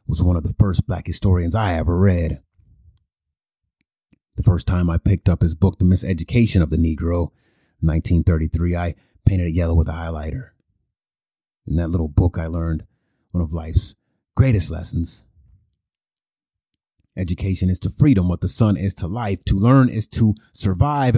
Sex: male